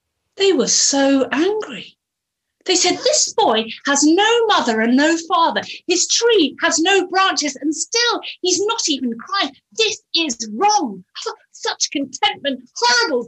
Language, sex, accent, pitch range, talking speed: German, female, British, 215-320 Hz, 140 wpm